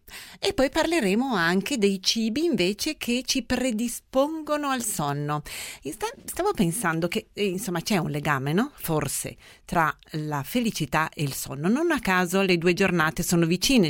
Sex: female